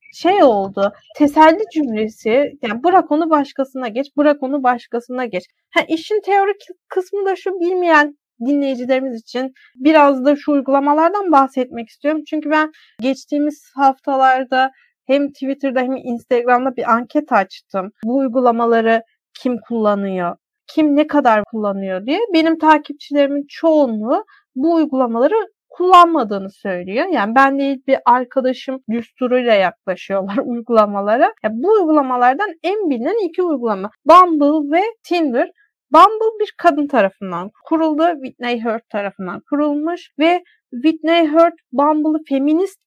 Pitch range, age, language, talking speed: 240-325 Hz, 30-49, Turkish, 125 wpm